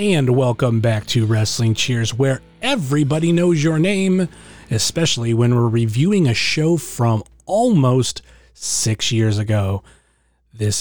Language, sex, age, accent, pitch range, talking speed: English, male, 30-49, American, 115-150 Hz, 130 wpm